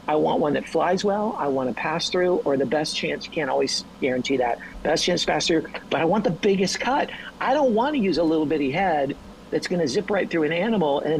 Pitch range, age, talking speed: 155-200 Hz, 50-69, 250 wpm